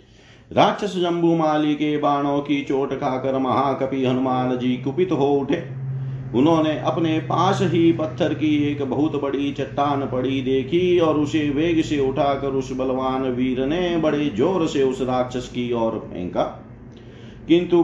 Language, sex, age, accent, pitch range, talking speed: Hindi, male, 40-59, native, 130-155 Hz, 65 wpm